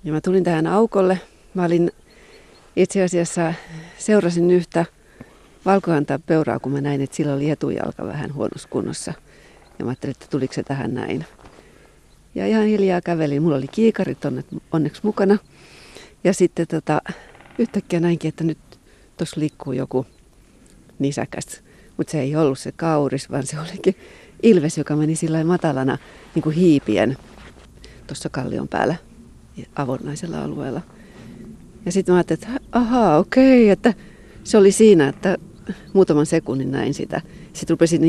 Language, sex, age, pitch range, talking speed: Finnish, female, 40-59, 150-185 Hz, 140 wpm